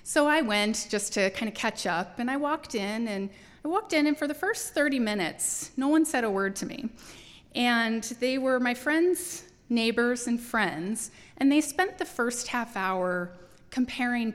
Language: English